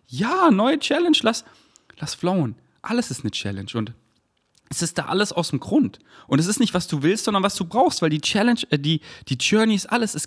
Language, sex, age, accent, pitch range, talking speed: German, male, 30-49, German, 120-170 Hz, 230 wpm